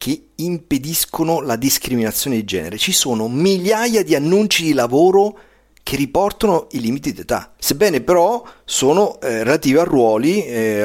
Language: Italian